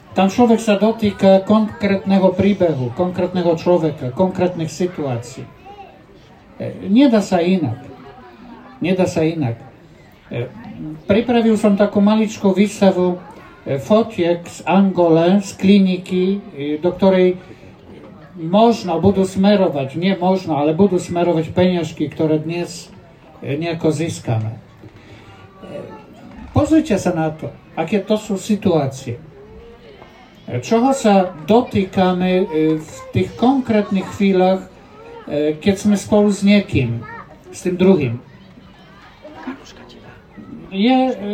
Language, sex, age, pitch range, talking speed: Slovak, male, 60-79, 160-205 Hz, 95 wpm